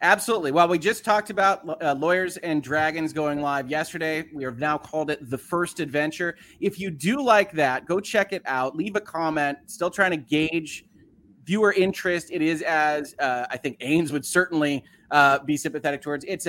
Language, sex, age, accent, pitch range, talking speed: English, male, 30-49, American, 135-175 Hz, 195 wpm